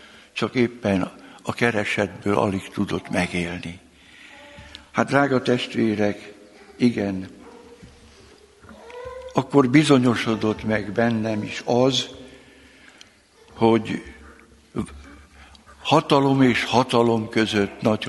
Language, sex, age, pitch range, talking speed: Hungarian, male, 60-79, 110-140 Hz, 75 wpm